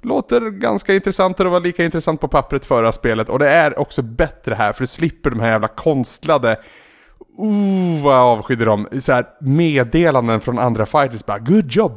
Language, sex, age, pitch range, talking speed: Swedish, male, 20-39, 115-170 Hz, 180 wpm